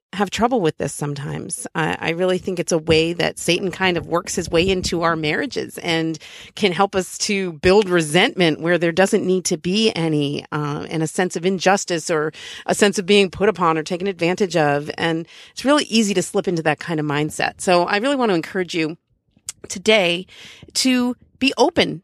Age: 40-59